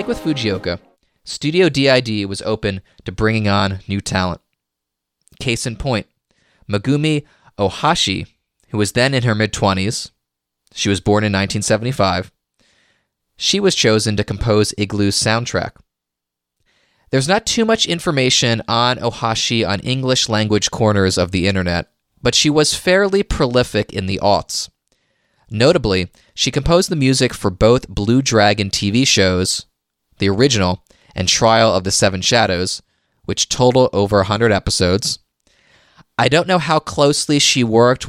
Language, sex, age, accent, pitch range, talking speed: English, male, 20-39, American, 95-130 Hz, 135 wpm